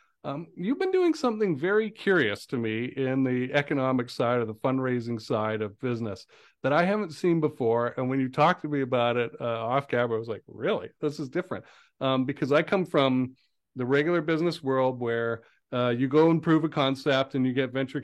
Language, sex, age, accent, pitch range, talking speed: English, male, 40-59, American, 120-150 Hz, 210 wpm